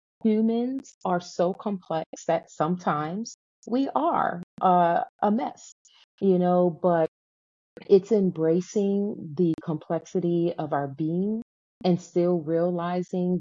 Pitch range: 155-185 Hz